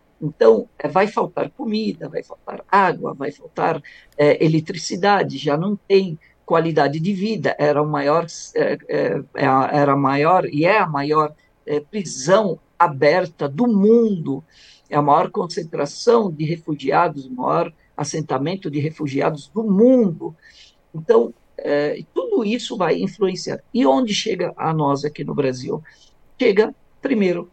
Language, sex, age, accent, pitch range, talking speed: Portuguese, male, 50-69, Brazilian, 145-205 Hz, 130 wpm